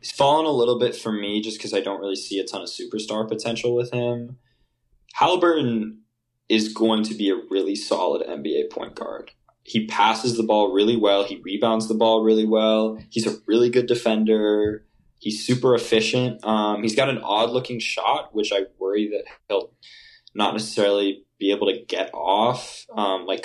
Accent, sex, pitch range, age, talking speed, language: American, male, 105-125 Hz, 20-39, 180 wpm, English